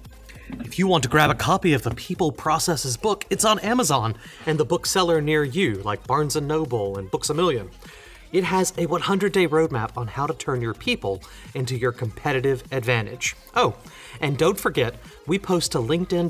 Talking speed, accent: 190 wpm, American